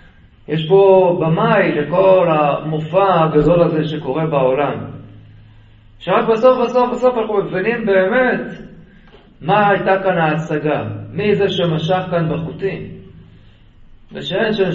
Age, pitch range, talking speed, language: 50-69, 145-190 Hz, 105 wpm, Hebrew